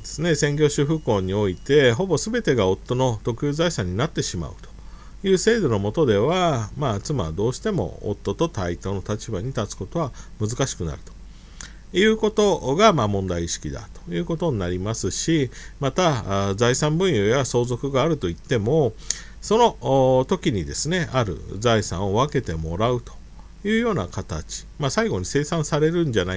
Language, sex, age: Japanese, male, 50-69